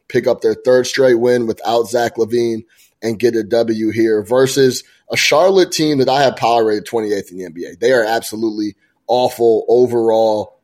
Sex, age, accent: male, 20-39, American